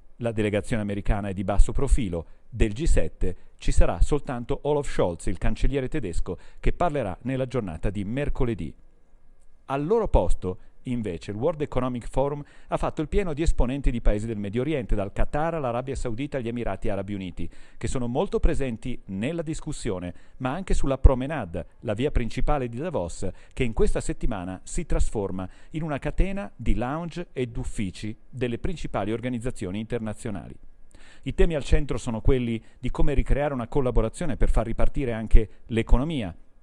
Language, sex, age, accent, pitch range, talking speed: Italian, male, 40-59, native, 105-140 Hz, 160 wpm